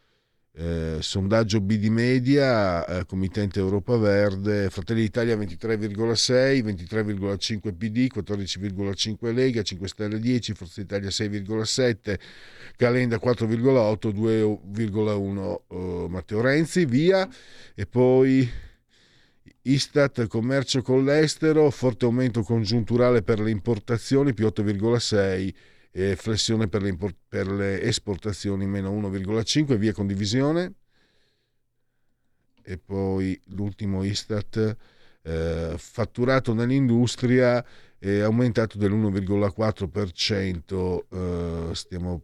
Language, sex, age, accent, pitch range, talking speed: Italian, male, 50-69, native, 95-125 Hz, 95 wpm